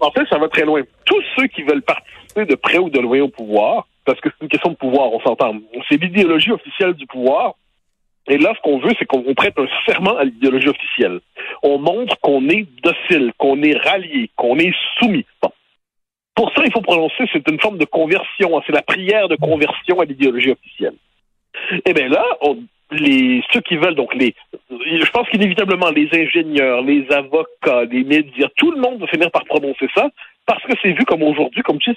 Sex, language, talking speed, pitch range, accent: male, French, 210 wpm, 145-215 Hz, French